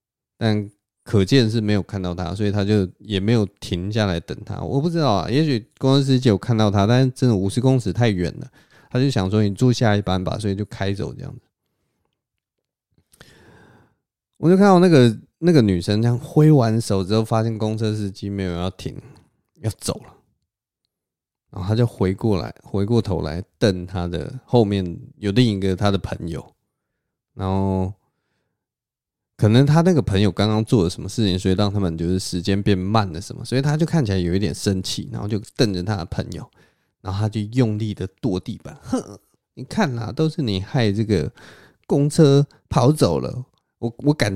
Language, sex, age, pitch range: Chinese, male, 20-39, 95-125 Hz